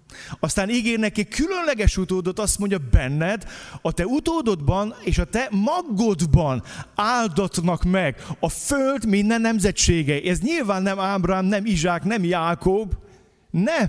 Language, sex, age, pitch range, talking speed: Hungarian, male, 30-49, 150-210 Hz, 130 wpm